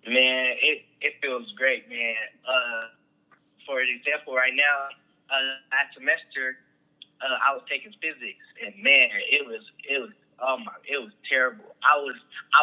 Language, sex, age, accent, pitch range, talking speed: English, male, 10-29, American, 135-170 Hz, 160 wpm